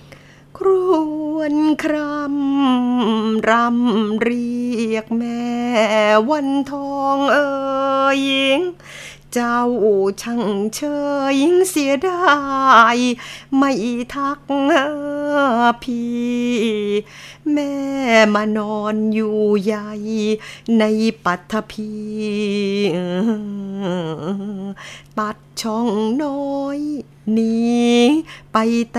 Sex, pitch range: female, 215-280 Hz